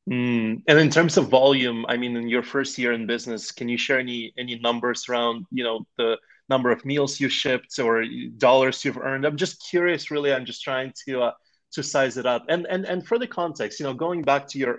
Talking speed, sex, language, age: 235 wpm, male, English, 20-39